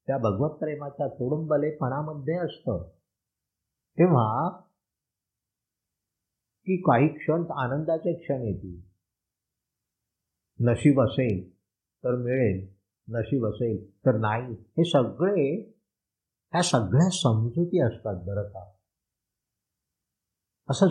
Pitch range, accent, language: 100-145 Hz, native, Marathi